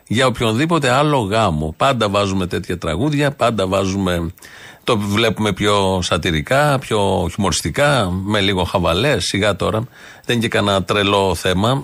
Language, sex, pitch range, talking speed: Greek, male, 105-140 Hz, 135 wpm